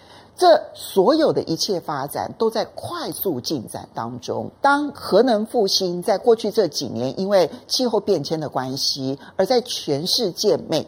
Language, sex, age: Chinese, male, 50-69